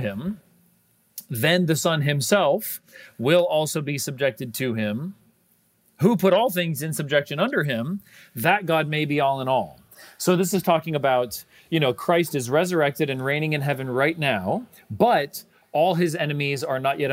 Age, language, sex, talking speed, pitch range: 40-59, English, male, 170 wpm, 130-170 Hz